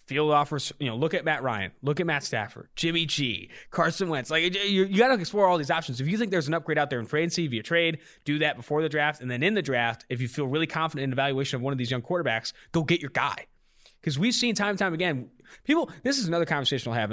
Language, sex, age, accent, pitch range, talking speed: English, male, 20-39, American, 135-185 Hz, 280 wpm